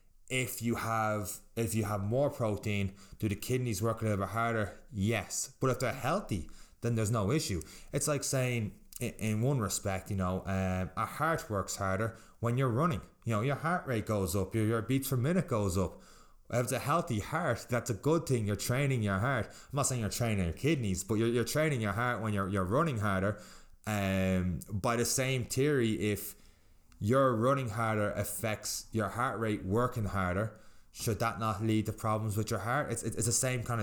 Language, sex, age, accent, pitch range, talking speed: English, male, 20-39, Irish, 95-120 Hz, 205 wpm